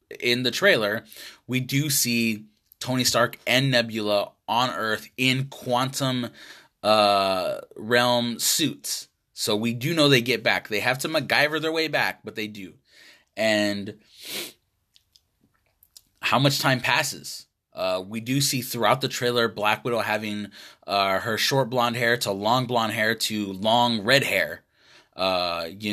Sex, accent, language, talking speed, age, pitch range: male, American, English, 150 wpm, 20-39, 105-125 Hz